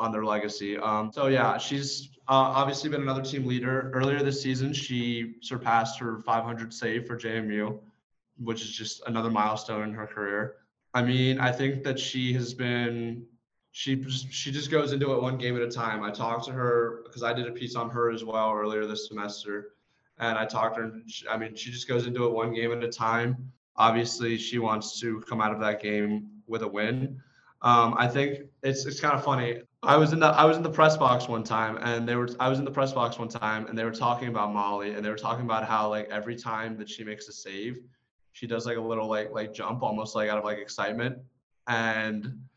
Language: English